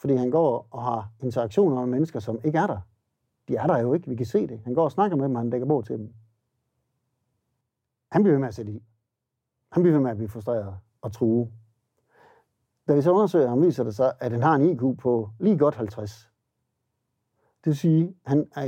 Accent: native